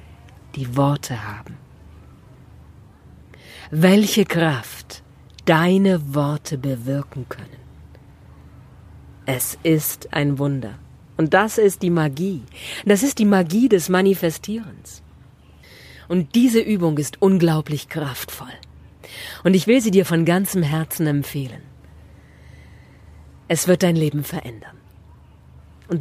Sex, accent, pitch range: female, German, 130-180 Hz